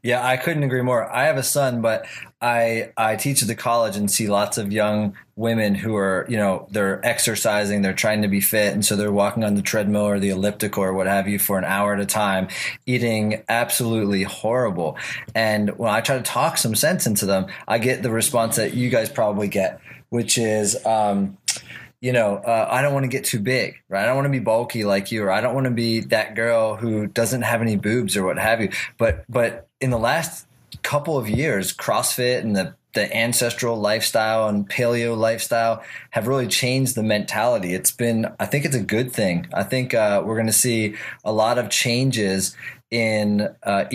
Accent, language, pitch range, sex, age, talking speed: American, English, 105-120 Hz, male, 20-39, 215 wpm